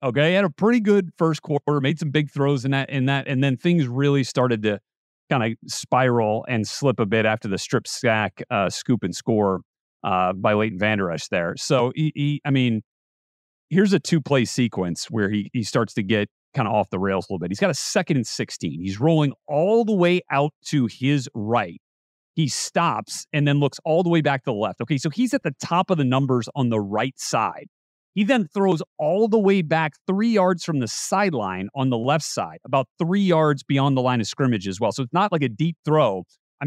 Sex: male